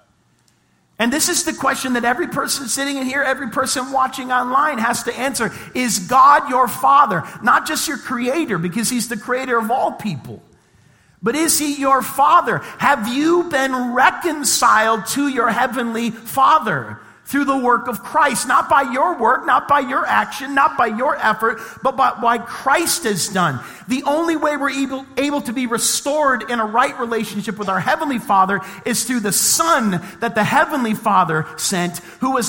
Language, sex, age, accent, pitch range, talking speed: English, male, 40-59, American, 220-280 Hz, 180 wpm